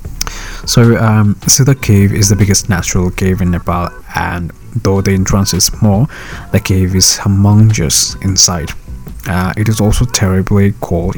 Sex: male